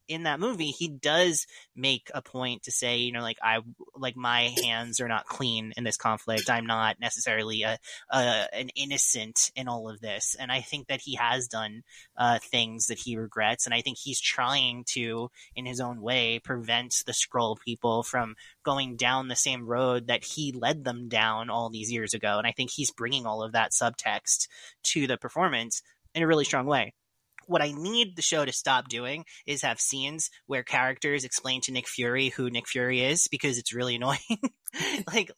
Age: 20-39